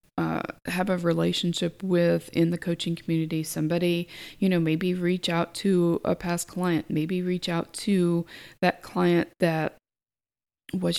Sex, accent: female, American